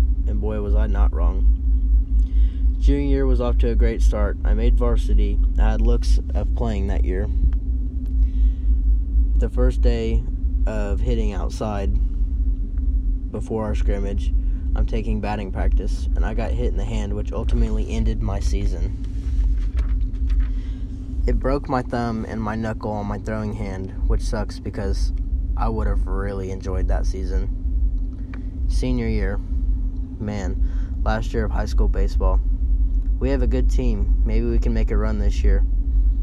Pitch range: 65-100 Hz